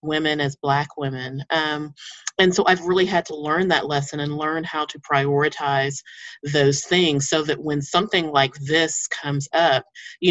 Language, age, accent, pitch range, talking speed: English, 30-49, American, 140-160 Hz, 175 wpm